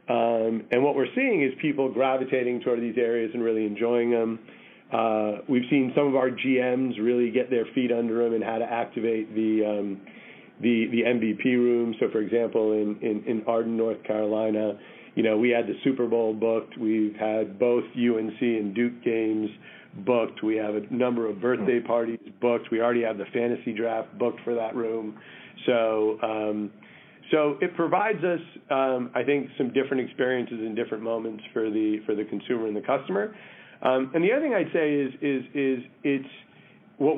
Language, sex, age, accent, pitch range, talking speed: English, male, 40-59, American, 115-135 Hz, 185 wpm